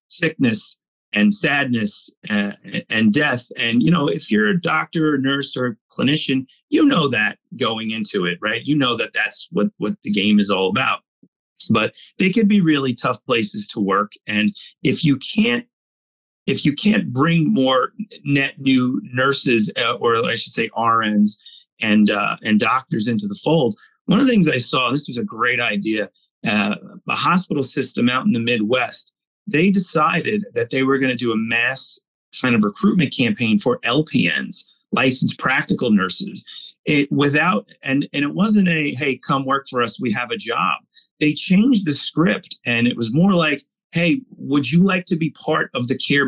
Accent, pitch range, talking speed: American, 120-190 Hz, 185 wpm